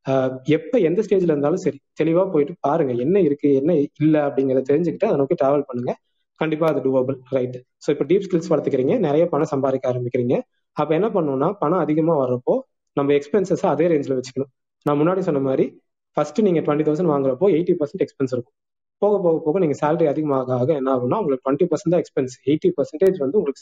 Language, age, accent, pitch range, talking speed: Tamil, 20-39, native, 135-175 Hz, 180 wpm